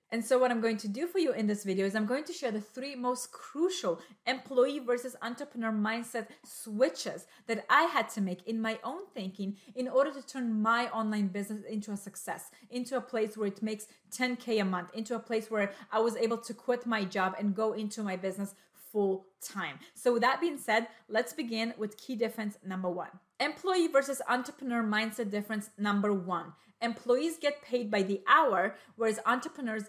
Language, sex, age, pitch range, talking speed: English, female, 30-49, 205-250 Hz, 200 wpm